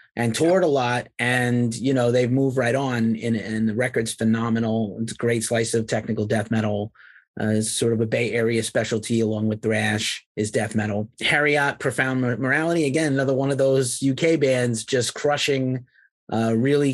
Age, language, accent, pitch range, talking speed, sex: 30-49, English, American, 115-130 Hz, 190 wpm, male